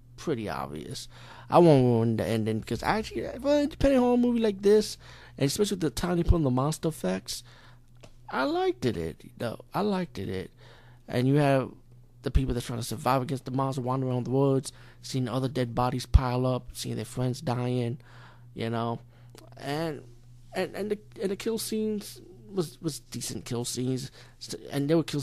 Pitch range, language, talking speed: 120-140 Hz, English, 195 wpm